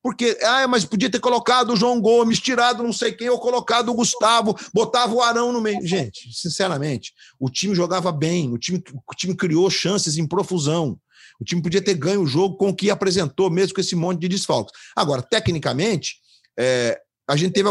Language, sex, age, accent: Portuguese, male, 40-59, Brazilian